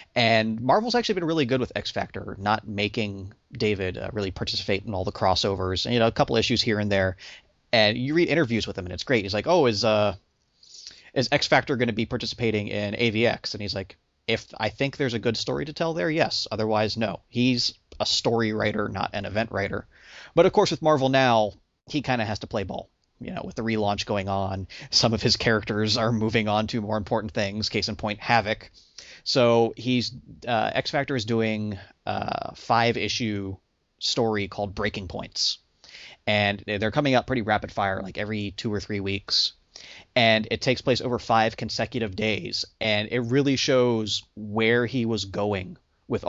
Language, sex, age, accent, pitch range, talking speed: English, male, 30-49, American, 105-120 Hz, 195 wpm